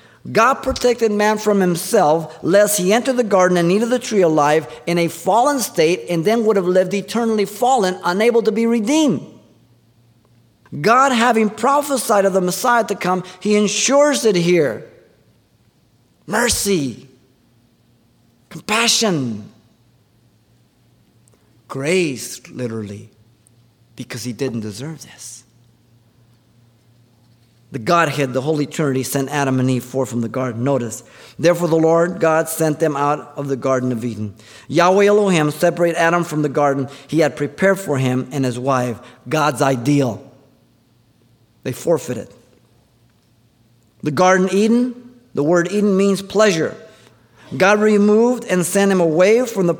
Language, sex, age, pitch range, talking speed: English, male, 50-69, 125-200 Hz, 135 wpm